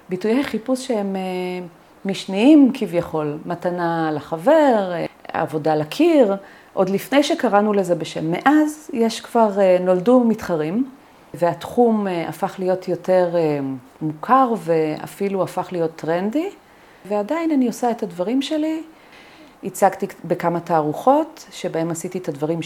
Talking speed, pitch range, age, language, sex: 110 wpm, 170-230 Hz, 40-59, Hebrew, female